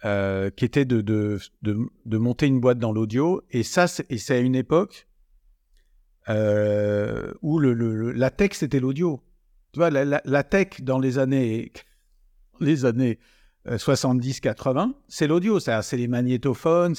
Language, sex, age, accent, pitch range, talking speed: French, male, 50-69, French, 110-140 Hz, 165 wpm